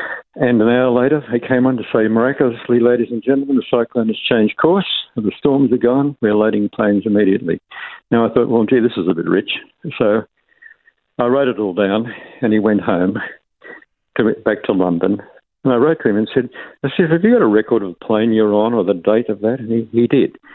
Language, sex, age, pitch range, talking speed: English, male, 60-79, 105-125 Hz, 230 wpm